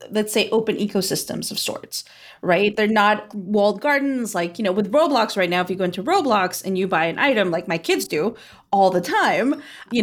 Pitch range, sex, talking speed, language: 180-225 Hz, female, 215 wpm, English